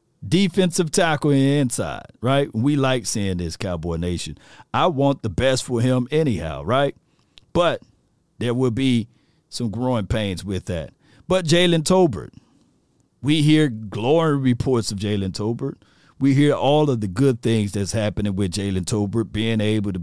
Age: 50-69